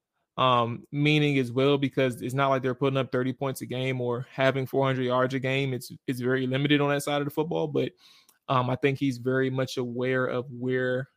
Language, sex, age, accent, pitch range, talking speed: English, male, 20-39, American, 125-140 Hz, 220 wpm